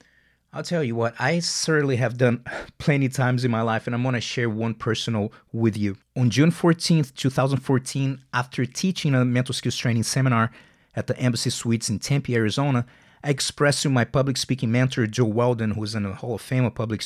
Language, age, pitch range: English, 30-49, 115-140 Hz